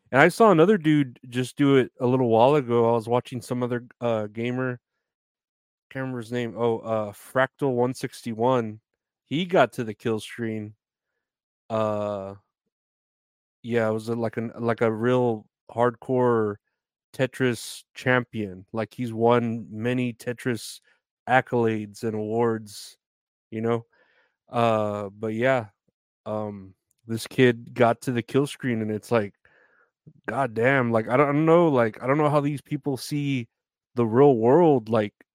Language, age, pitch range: English, 30-49, 115-135 Hz